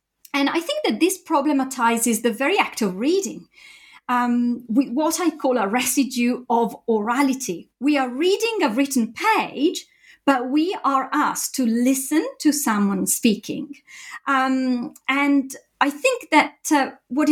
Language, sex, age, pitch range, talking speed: English, female, 40-59, 220-285 Hz, 145 wpm